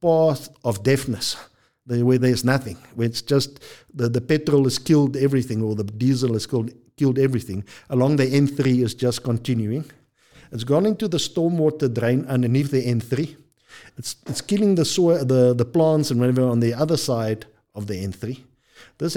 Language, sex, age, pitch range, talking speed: English, male, 50-69, 115-145 Hz, 170 wpm